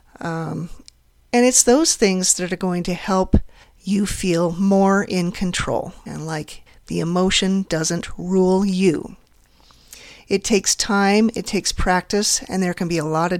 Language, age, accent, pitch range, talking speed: English, 40-59, American, 175-220 Hz, 155 wpm